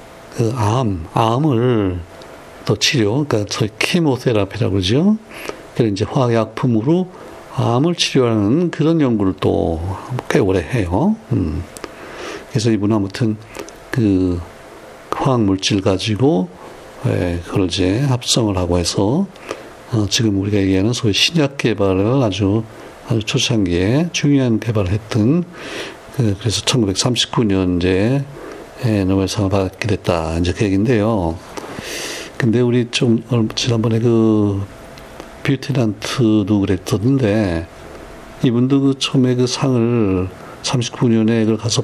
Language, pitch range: Korean, 100-130 Hz